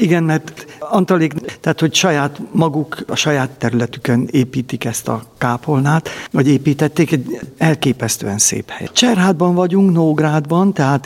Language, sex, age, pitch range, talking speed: Hungarian, male, 50-69, 130-160 Hz, 130 wpm